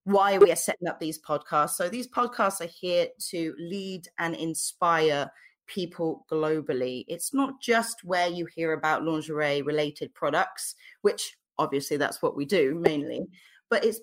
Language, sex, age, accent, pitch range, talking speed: English, female, 30-49, British, 165-220 Hz, 155 wpm